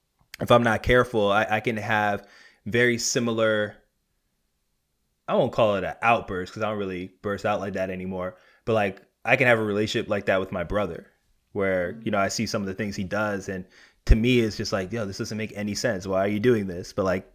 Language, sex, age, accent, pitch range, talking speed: English, male, 20-39, American, 100-115 Hz, 230 wpm